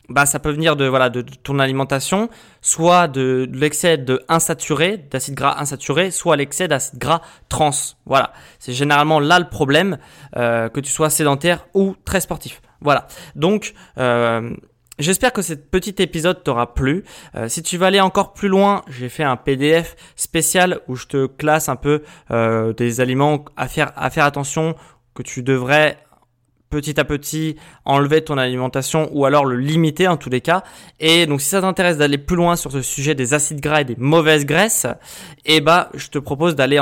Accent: French